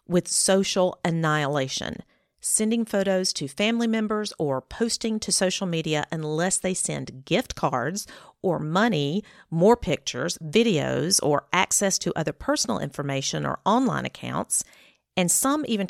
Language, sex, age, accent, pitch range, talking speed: English, female, 40-59, American, 155-205 Hz, 130 wpm